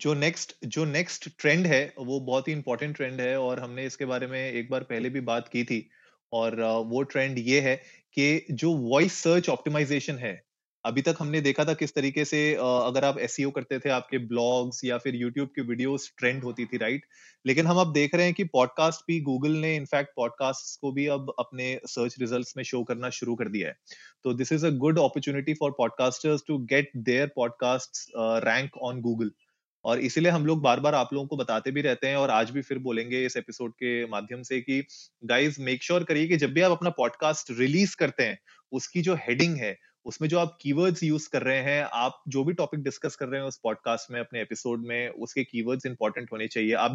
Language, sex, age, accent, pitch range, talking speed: Hindi, male, 20-39, native, 125-155 Hz, 215 wpm